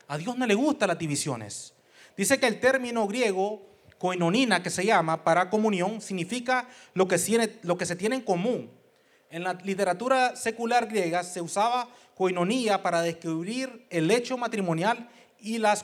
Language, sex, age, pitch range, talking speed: English, male, 30-49, 185-245 Hz, 165 wpm